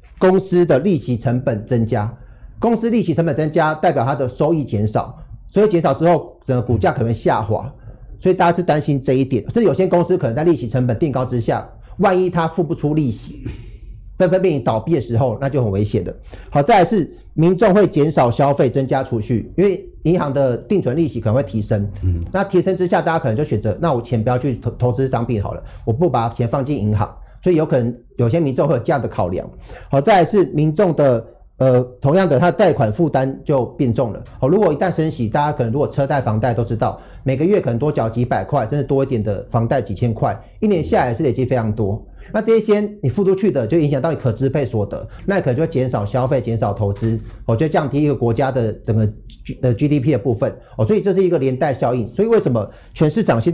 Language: Chinese